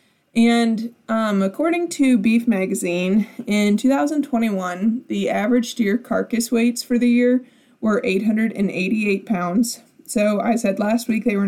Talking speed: 135 wpm